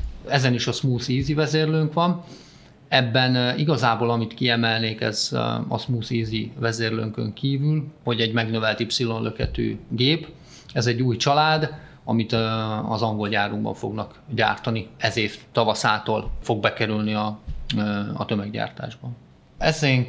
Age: 30-49